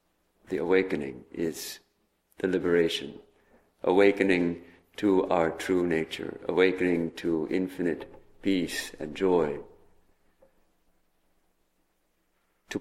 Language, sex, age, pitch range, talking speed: English, male, 50-69, 95-120 Hz, 80 wpm